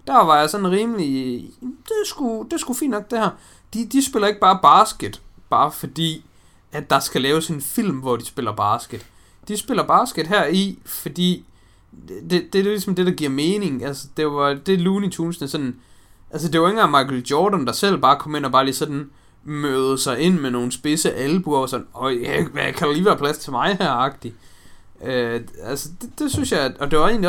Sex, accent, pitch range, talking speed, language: male, native, 120-175 Hz, 220 wpm, Danish